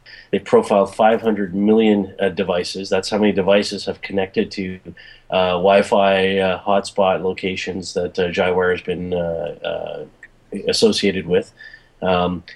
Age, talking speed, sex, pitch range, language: 30-49, 135 wpm, male, 95-110 Hz, English